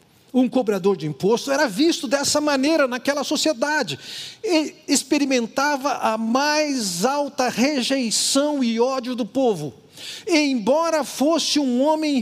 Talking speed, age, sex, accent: 125 wpm, 50-69, male, Brazilian